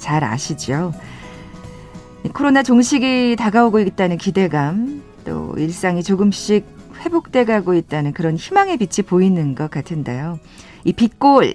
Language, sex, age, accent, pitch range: Korean, female, 40-59, native, 160-250 Hz